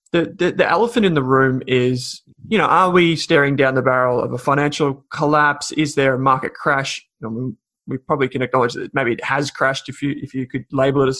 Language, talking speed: English, 240 wpm